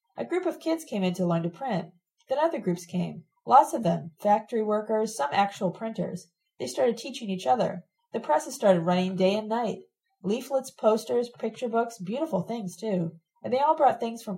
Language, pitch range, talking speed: English, 175-235 Hz, 195 wpm